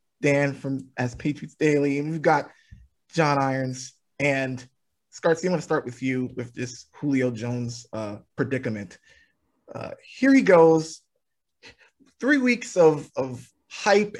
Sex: male